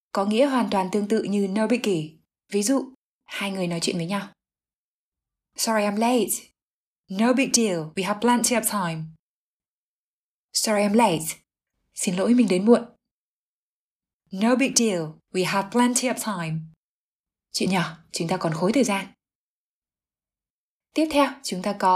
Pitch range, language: 190-235 Hz, Vietnamese